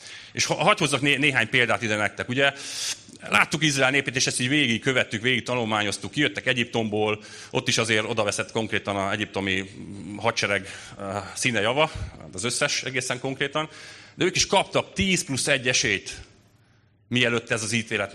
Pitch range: 110-140 Hz